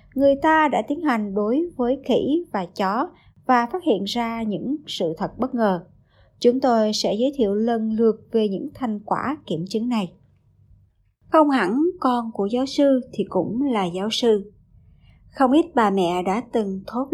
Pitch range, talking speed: 200-275 Hz, 180 wpm